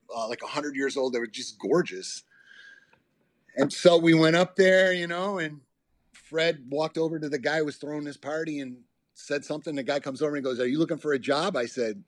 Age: 40-59